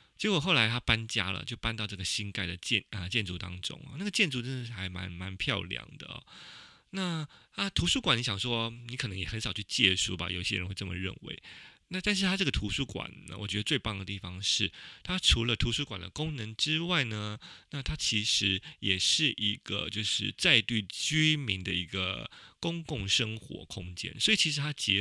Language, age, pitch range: Chinese, 30-49, 95-130 Hz